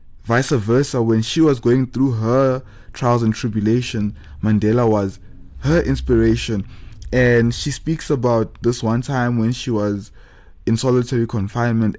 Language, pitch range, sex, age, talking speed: English, 110-135 Hz, male, 20-39, 140 wpm